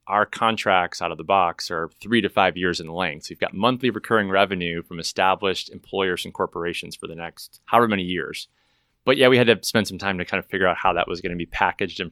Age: 30-49